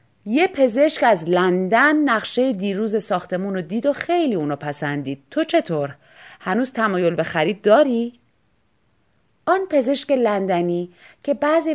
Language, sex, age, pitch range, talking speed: Persian, female, 30-49, 200-295 Hz, 130 wpm